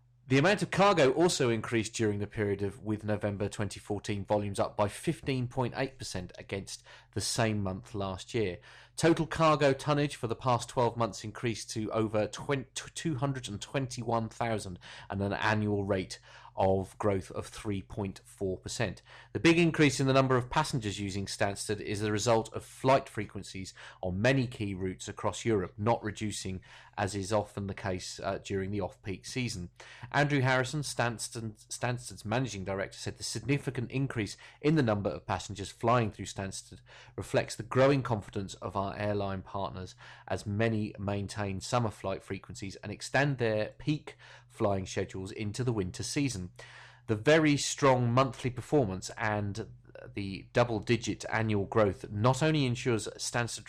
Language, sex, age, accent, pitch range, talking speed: English, male, 30-49, British, 100-125 Hz, 150 wpm